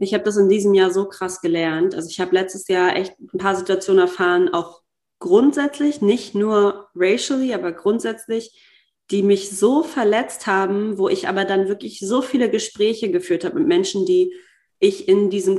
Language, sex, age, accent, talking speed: German, female, 30-49, German, 180 wpm